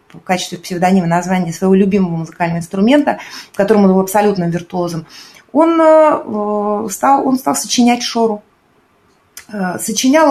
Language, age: Russian, 20-39